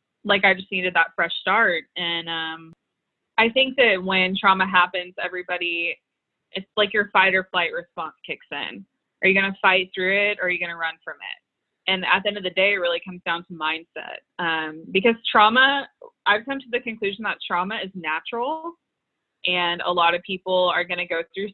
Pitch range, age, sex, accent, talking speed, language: 175-220 Hz, 20-39, female, American, 200 wpm, English